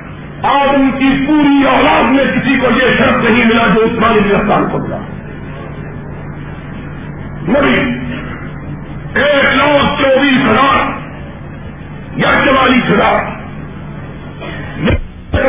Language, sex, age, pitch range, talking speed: Urdu, male, 50-69, 235-280 Hz, 100 wpm